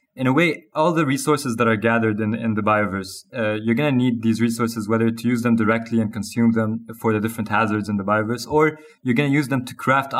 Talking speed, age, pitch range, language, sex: 255 wpm, 20-39, 115-130 Hz, English, male